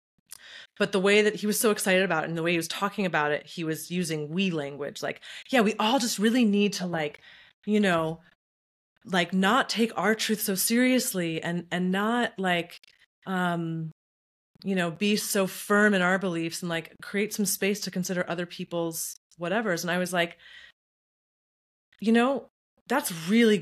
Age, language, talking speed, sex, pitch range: 30-49, English, 185 wpm, female, 165-210 Hz